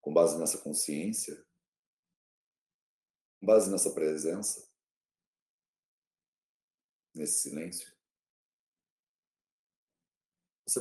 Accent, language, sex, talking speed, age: Brazilian, English, male, 60 wpm, 40-59